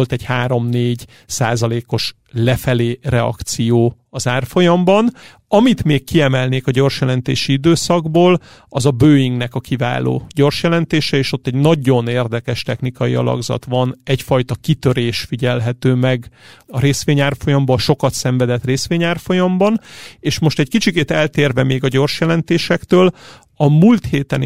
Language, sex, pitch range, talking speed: Hungarian, male, 125-150 Hz, 125 wpm